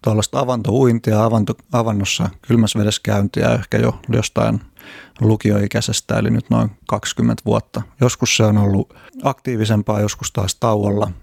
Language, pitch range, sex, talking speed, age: Finnish, 105-115 Hz, male, 120 wpm, 30-49